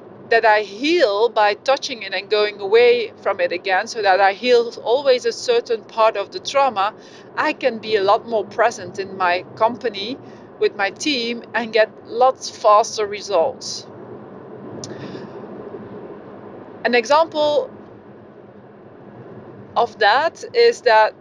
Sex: female